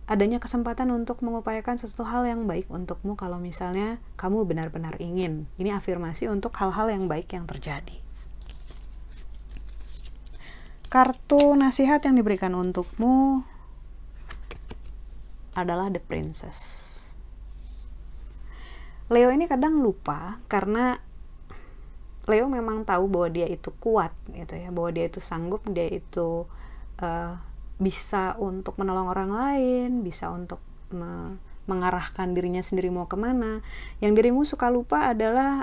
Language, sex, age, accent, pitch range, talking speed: Indonesian, female, 30-49, native, 170-230 Hz, 115 wpm